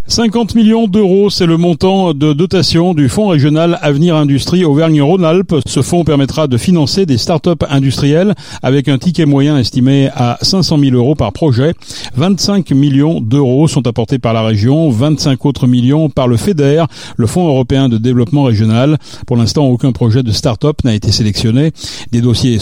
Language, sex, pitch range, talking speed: French, male, 125-165 Hz, 170 wpm